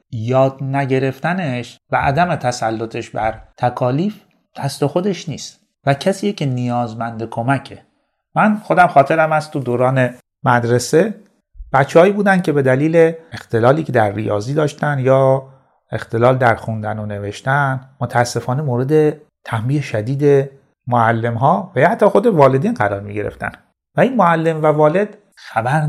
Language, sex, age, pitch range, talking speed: Persian, male, 30-49, 110-155 Hz, 130 wpm